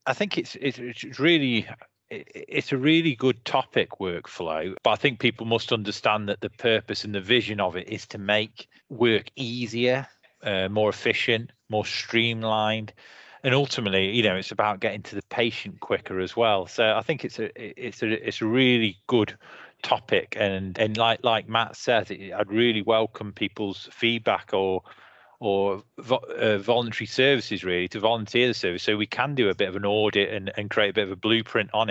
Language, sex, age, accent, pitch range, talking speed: English, male, 30-49, British, 105-120 Hz, 190 wpm